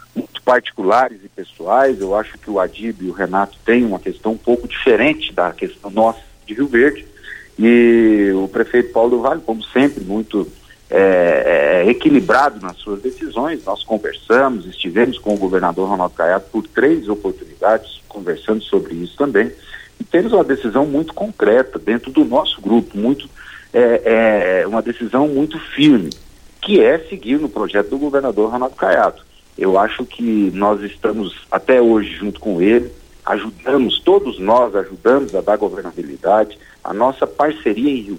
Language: Portuguese